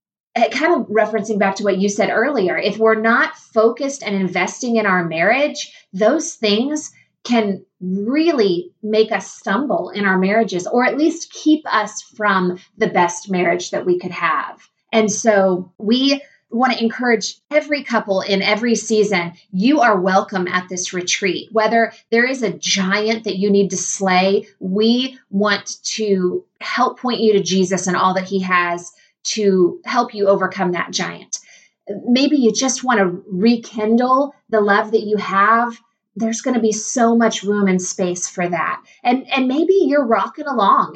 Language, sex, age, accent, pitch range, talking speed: English, female, 30-49, American, 185-235 Hz, 170 wpm